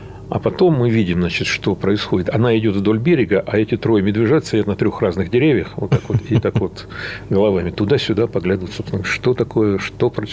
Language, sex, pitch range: Russian, male, 100-125 Hz